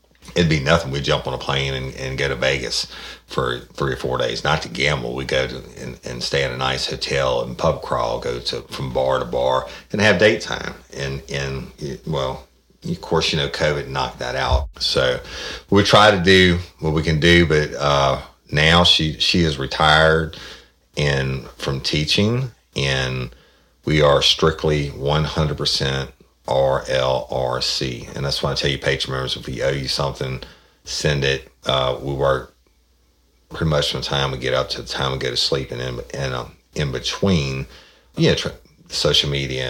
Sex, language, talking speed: male, English, 195 wpm